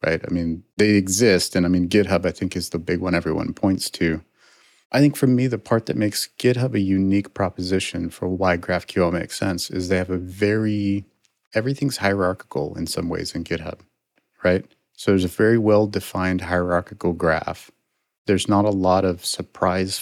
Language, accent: English, American